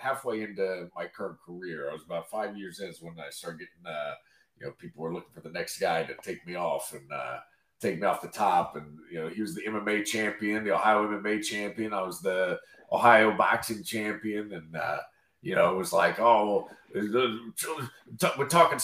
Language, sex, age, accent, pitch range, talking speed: English, male, 40-59, American, 105-135 Hz, 205 wpm